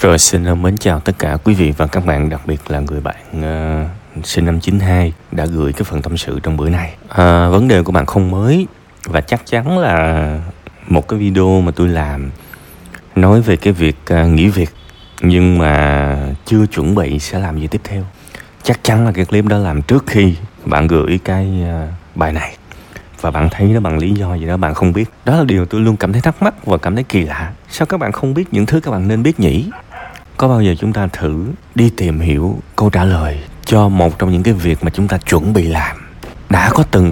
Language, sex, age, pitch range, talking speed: Vietnamese, male, 20-39, 80-105 Hz, 230 wpm